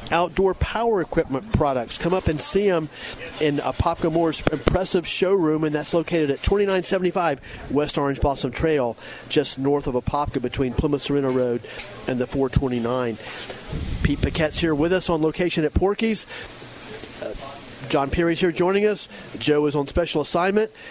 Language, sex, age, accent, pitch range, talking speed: English, male, 40-59, American, 140-160 Hz, 155 wpm